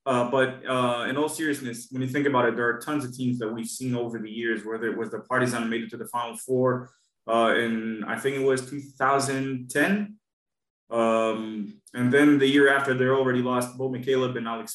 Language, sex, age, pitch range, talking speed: English, male, 20-39, 120-140 Hz, 215 wpm